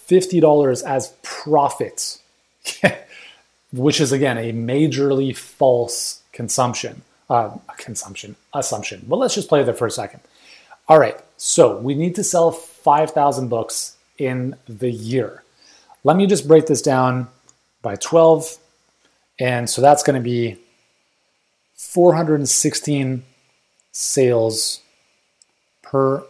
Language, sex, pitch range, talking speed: English, male, 130-160 Hz, 110 wpm